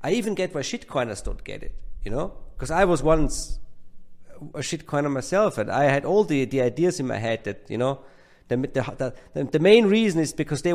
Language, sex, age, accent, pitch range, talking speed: English, male, 40-59, German, 120-155 Hz, 225 wpm